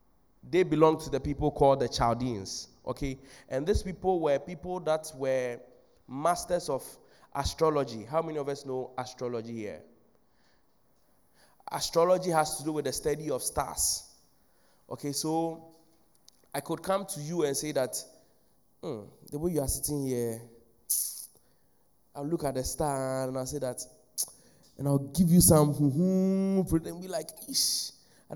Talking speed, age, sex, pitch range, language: 150 wpm, 20-39, male, 135-170 Hz, English